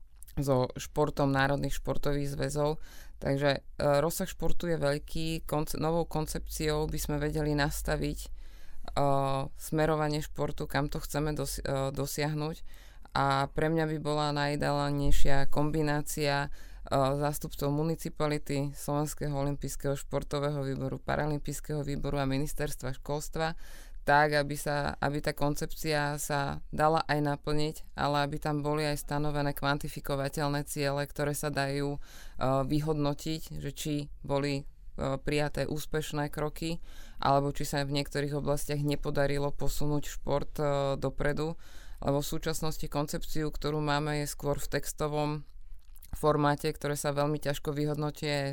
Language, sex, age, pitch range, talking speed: Slovak, female, 20-39, 140-150 Hz, 125 wpm